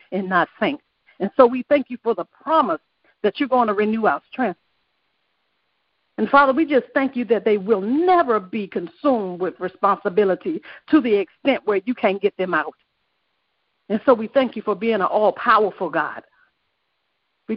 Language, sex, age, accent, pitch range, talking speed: English, female, 50-69, American, 205-270 Hz, 180 wpm